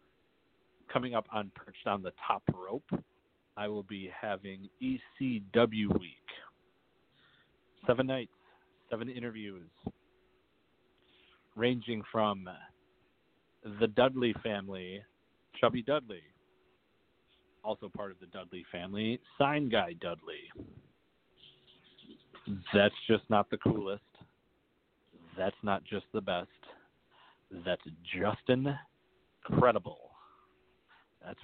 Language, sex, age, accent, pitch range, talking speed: English, male, 40-59, American, 95-110 Hz, 90 wpm